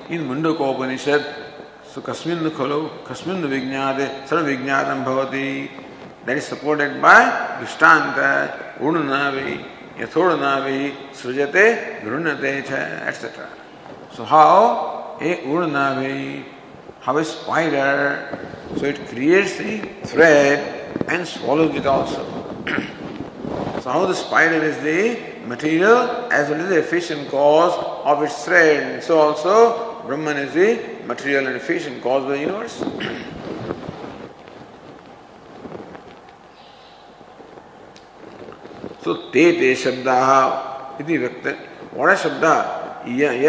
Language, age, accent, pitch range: English, 50-69, Indian, 135-155 Hz